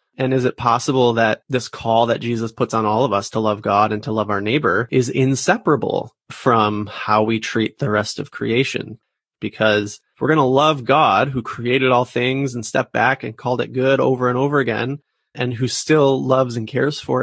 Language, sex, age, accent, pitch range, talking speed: English, male, 30-49, American, 110-135 Hz, 210 wpm